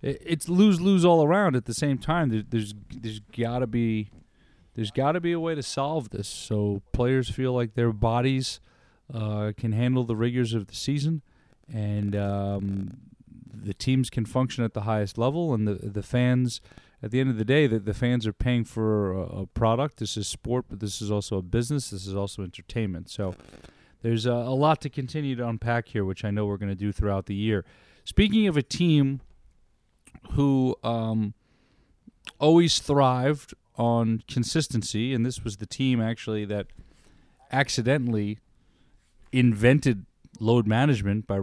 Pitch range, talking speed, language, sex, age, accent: 105-135 Hz, 175 wpm, English, male, 40-59, American